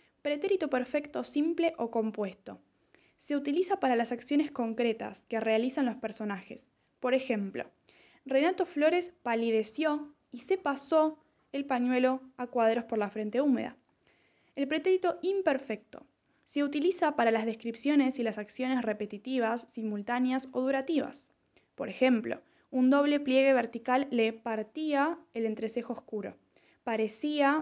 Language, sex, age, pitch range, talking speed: Spanish, female, 20-39, 225-290 Hz, 125 wpm